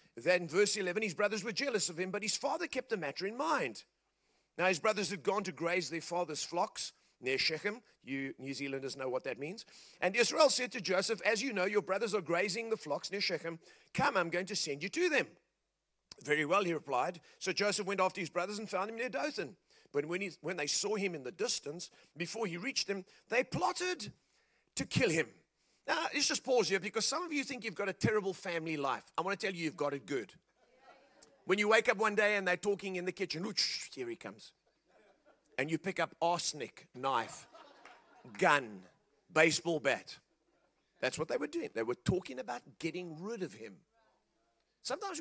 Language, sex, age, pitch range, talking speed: English, male, 40-59, 165-215 Hz, 205 wpm